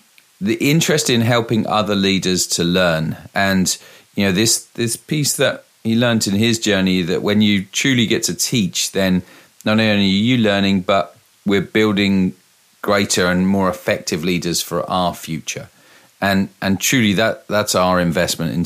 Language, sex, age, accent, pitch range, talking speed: English, male, 40-59, British, 90-110 Hz, 165 wpm